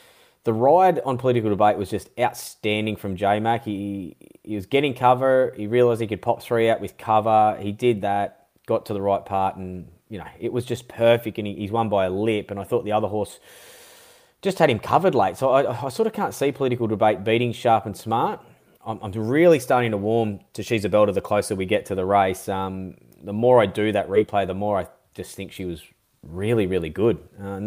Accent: Australian